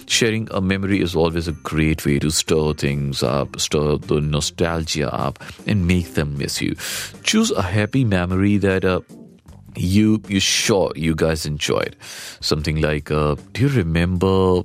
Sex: male